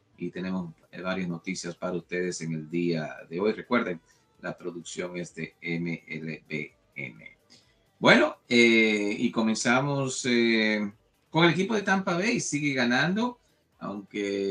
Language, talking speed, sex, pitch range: English, 130 wpm, male, 90-115 Hz